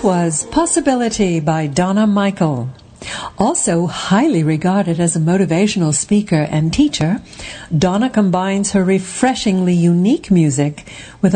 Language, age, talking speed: English, 60-79, 110 wpm